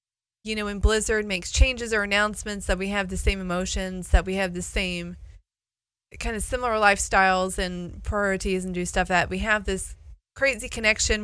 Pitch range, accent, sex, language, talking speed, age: 170-210 Hz, American, female, English, 180 wpm, 30-49